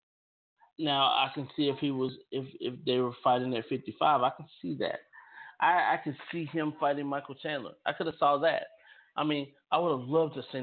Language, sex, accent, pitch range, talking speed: English, male, American, 140-185 Hz, 220 wpm